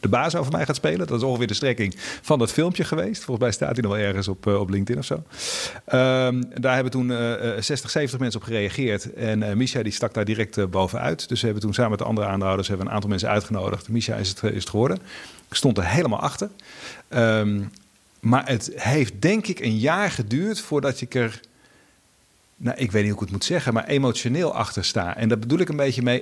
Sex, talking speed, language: male, 240 wpm, English